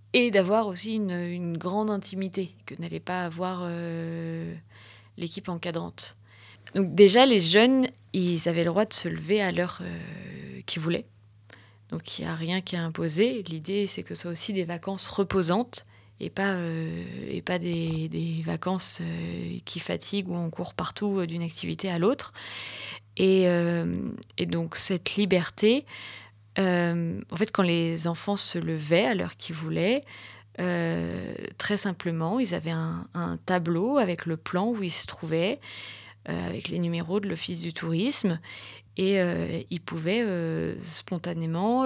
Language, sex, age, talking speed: French, female, 30-49, 165 wpm